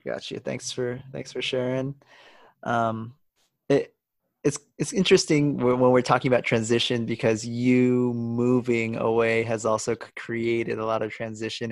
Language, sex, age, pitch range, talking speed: English, male, 20-39, 110-120 Hz, 150 wpm